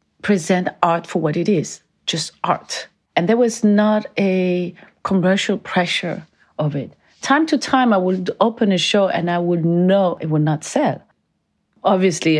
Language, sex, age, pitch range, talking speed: English, female, 40-59, 155-185 Hz, 165 wpm